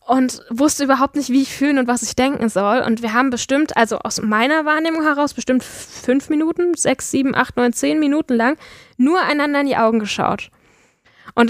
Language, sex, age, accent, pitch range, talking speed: German, female, 10-29, German, 225-270 Hz, 200 wpm